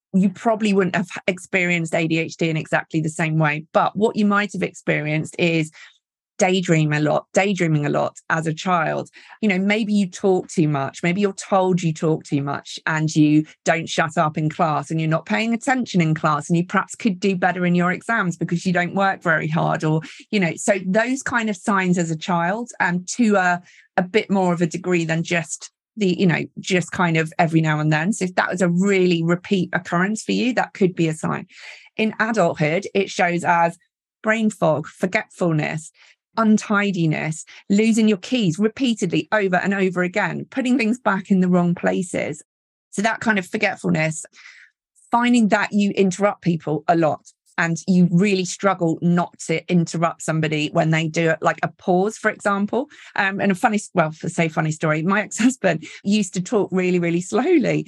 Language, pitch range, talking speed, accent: English, 165-210 Hz, 195 wpm, British